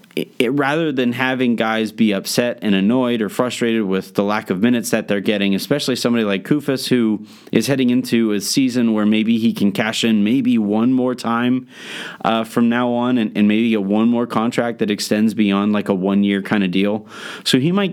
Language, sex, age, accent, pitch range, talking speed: English, male, 30-49, American, 105-135 Hz, 215 wpm